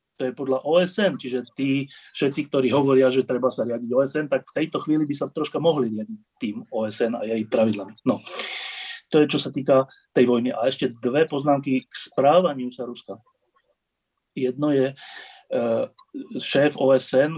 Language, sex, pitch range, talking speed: Slovak, male, 125-180 Hz, 165 wpm